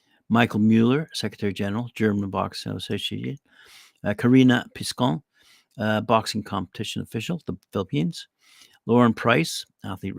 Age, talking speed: 60-79, 105 wpm